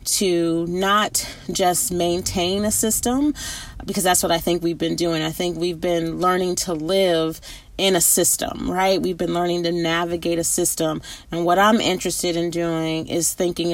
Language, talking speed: English, 175 wpm